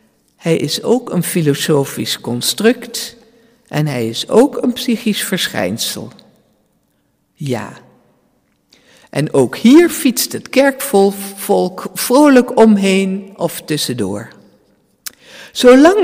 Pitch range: 155-240 Hz